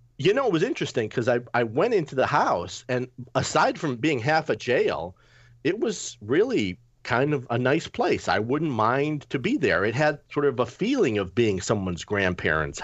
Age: 40-59